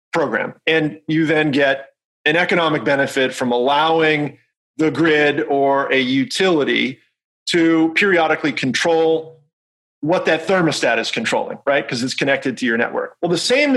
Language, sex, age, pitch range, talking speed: English, male, 30-49, 145-175 Hz, 145 wpm